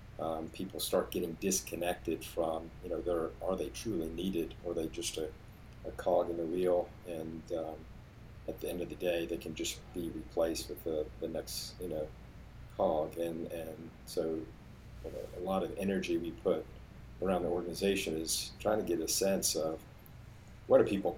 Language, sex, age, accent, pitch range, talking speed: English, male, 50-69, American, 85-100 Hz, 180 wpm